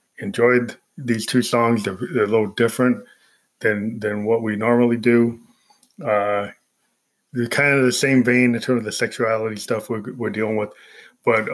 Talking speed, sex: 170 wpm, male